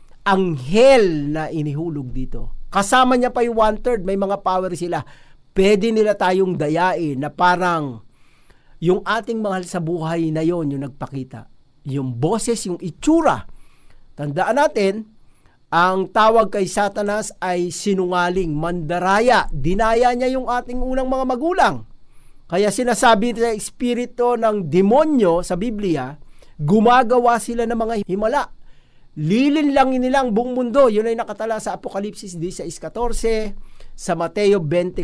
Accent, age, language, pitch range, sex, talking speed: native, 50-69, Filipino, 165-230 Hz, male, 130 wpm